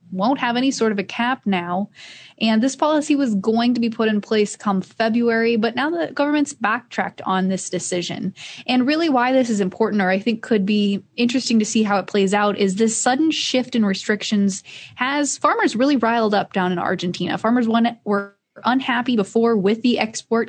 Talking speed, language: 200 wpm, English